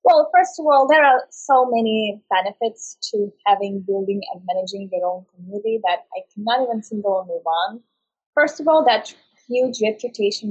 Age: 20-39